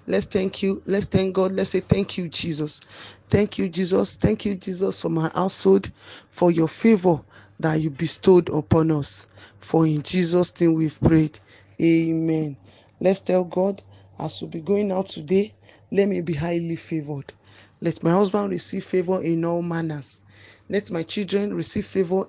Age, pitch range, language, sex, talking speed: 20-39, 155-195 Hz, English, male, 170 wpm